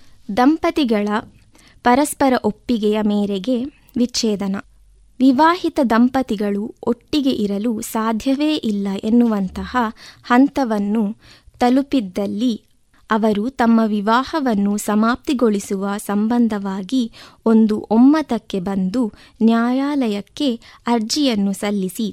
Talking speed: 70 wpm